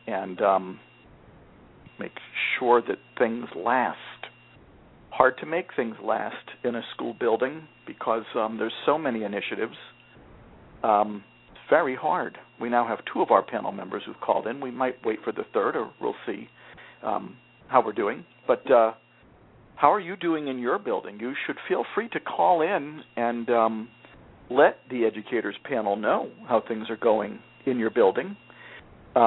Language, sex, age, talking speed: English, male, 50-69, 160 wpm